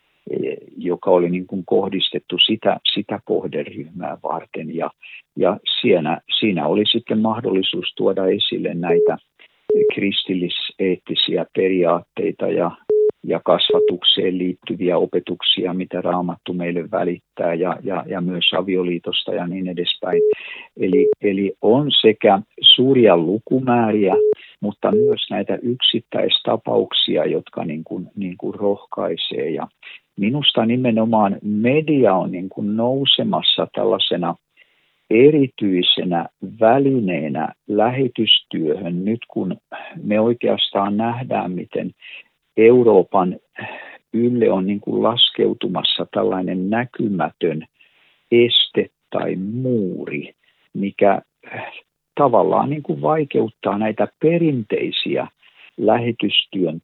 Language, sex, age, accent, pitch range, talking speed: Finnish, male, 50-69, native, 95-135 Hz, 95 wpm